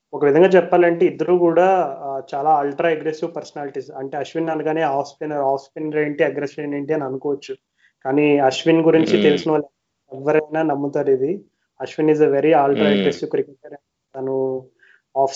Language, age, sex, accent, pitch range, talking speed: Telugu, 20-39, male, native, 140-165 Hz, 150 wpm